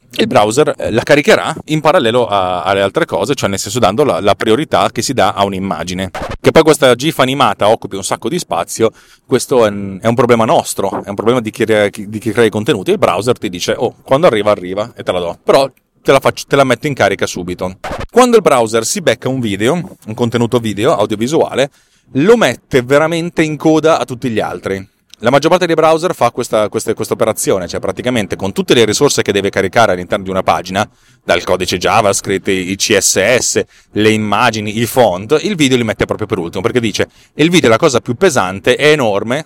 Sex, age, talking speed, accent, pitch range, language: male, 30-49, 205 wpm, native, 100-135 Hz, Italian